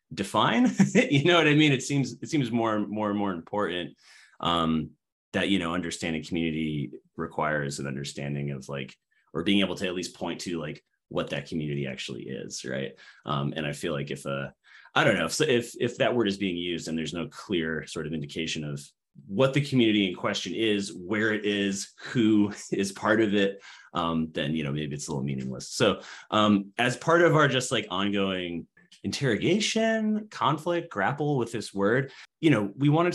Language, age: English, 30-49